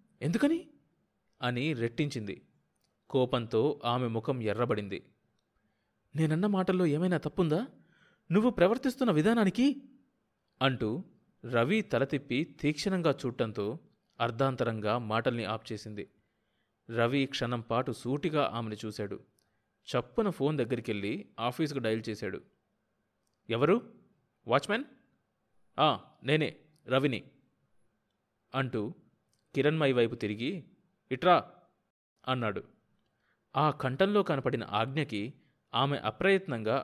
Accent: native